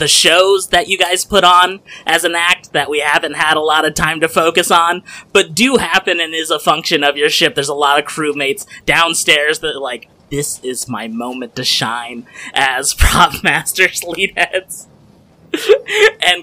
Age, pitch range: 20-39, 125-170 Hz